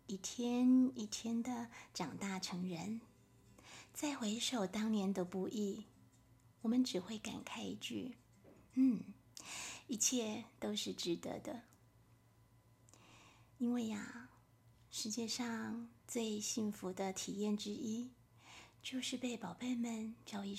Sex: female